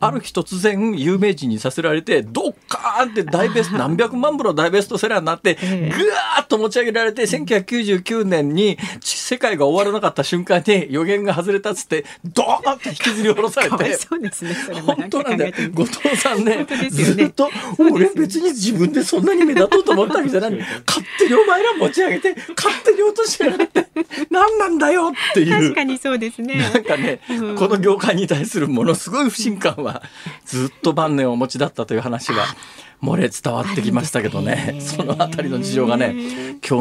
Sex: male